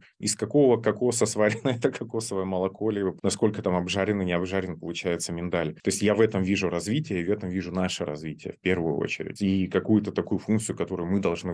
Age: 30-49